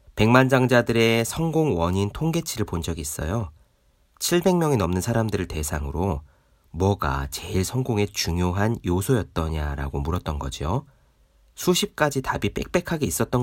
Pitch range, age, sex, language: 75-115 Hz, 40-59, male, Korean